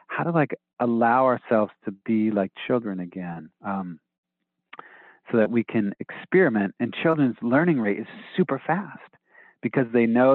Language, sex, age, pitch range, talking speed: English, male, 40-59, 105-135 Hz, 150 wpm